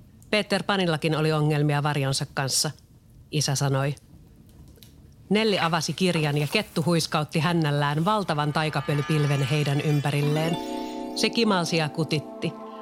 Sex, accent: female, native